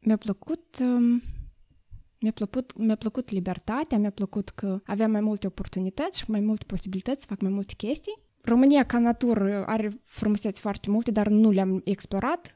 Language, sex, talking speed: Romanian, female, 165 wpm